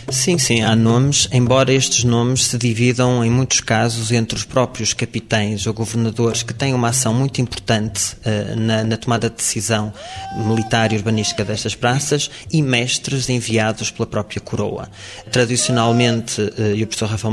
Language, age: Portuguese, 20-39